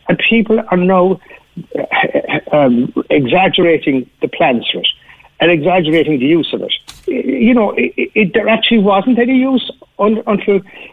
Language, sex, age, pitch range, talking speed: English, male, 60-79, 135-210 Hz, 155 wpm